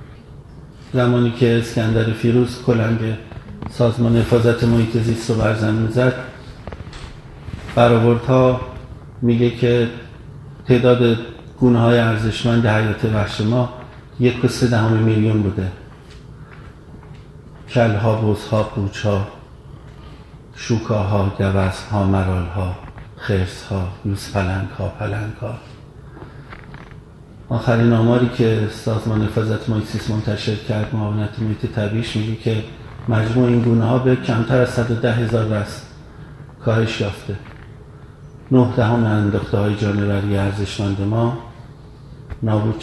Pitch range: 110-125 Hz